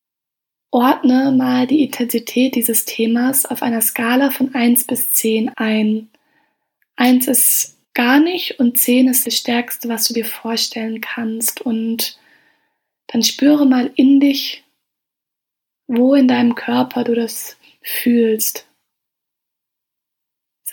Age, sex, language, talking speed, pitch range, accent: 20-39, female, German, 120 wpm, 235-255 Hz, German